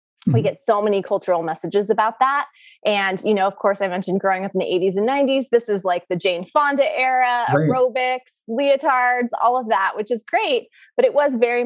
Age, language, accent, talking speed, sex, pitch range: 20-39, English, American, 210 wpm, female, 190-255 Hz